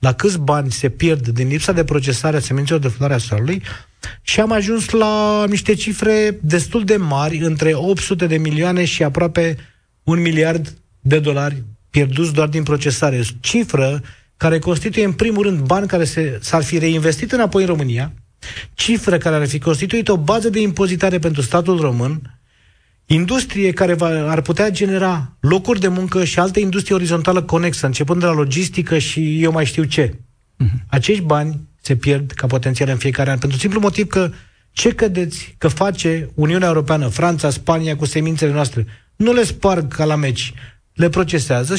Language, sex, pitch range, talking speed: Romanian, male, 135-185 Hz, 170 wpm